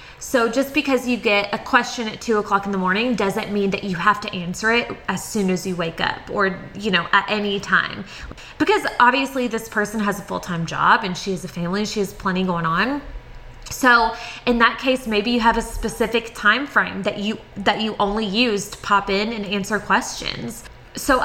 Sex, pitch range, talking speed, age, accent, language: female, 200-245 Hz, 210 wpm, 20-39, American, English